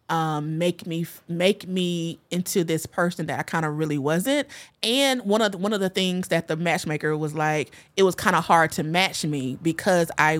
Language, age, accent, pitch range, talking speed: English, 30-49, American, 155-195 Hz, 215 wpm